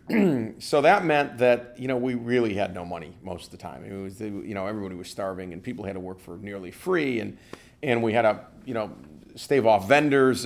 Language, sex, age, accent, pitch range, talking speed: English, male, 40-59, American, 95-120 Hz, 230 wpm